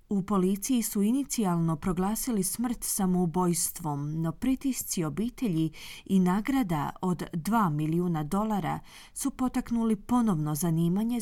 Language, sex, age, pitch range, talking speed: Croatian, female, 30-49, 170-230 Hz, 105 wpm